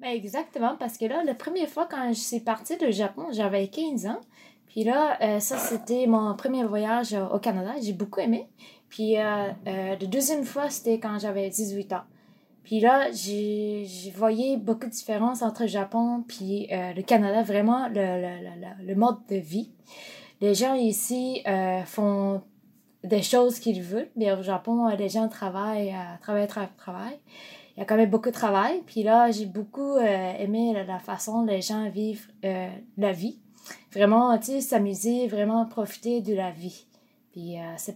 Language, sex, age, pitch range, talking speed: French, female, 20-39, 200-235 Hz, 175 wpm